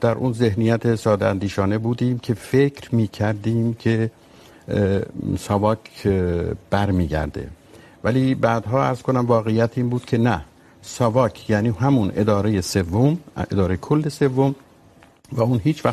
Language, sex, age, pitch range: Urdu, male, 60-79, 105-130 Hz